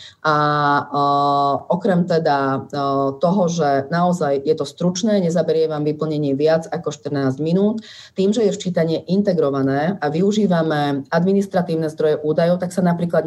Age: 30-49